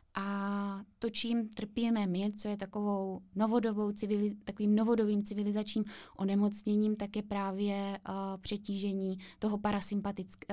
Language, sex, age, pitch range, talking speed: Czech, female, 20-39, 195-215 Hz, 115 wpm